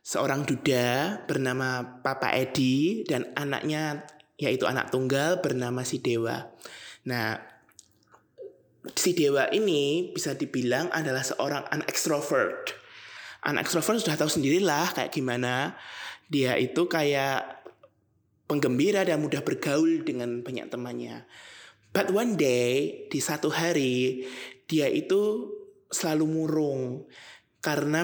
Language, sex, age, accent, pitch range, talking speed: Indonesian, male, 20-39, native, 130-170 Hz, 105 wpm